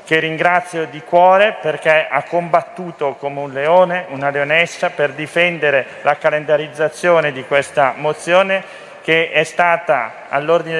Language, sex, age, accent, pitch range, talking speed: Italian, male, 40-59, native, 150-185 Hz, 130 wpm